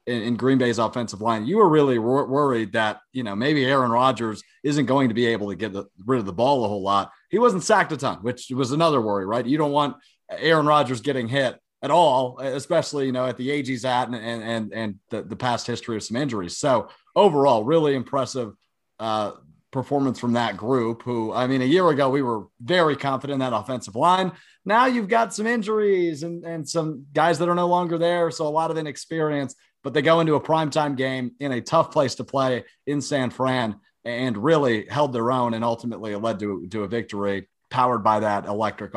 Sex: male